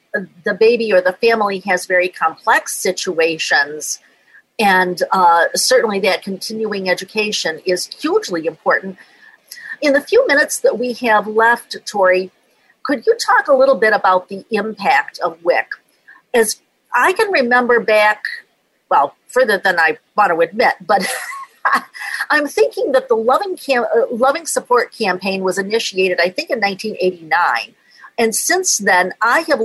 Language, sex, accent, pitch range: English, female, American, 195-290 Hz